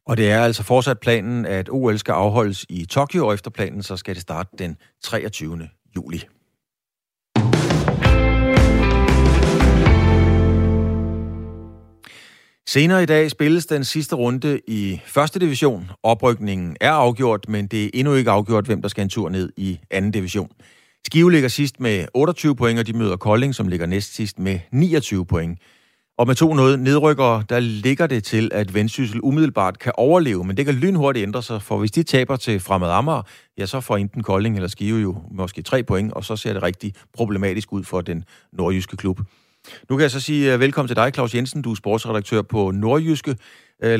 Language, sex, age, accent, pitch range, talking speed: Danish, male, 40-59, native, 100-130 Hz, 180 wpm